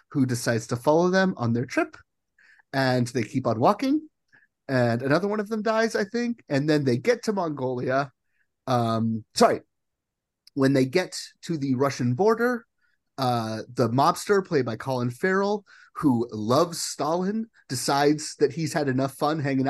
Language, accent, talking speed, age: English, American, 160 wpm, 30-49